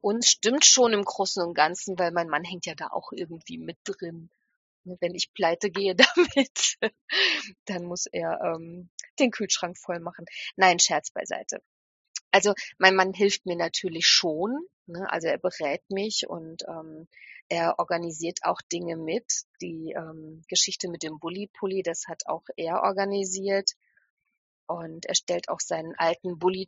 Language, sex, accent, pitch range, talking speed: German, female, German, 175-200 Hz, 155 wpm